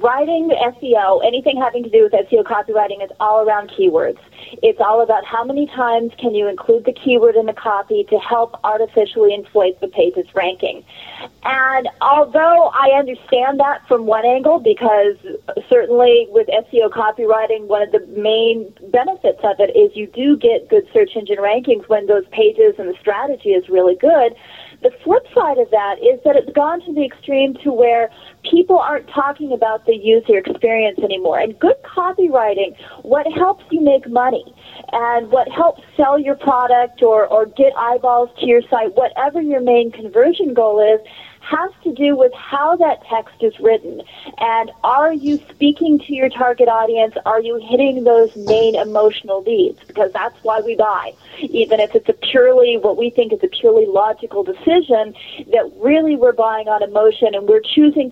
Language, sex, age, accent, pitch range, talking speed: English, female, 30-49, American, 215-310 Hz, 180 wpm